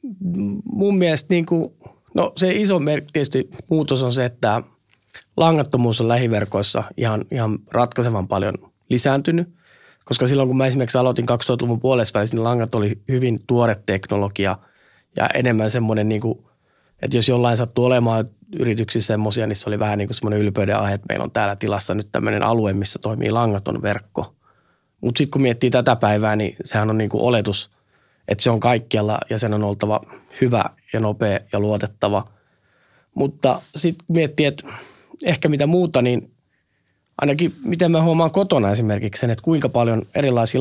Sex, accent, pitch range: male, native, 105-130 Hz